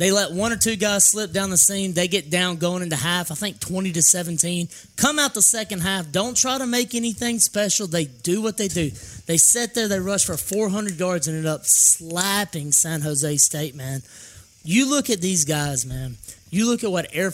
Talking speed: 220 wpm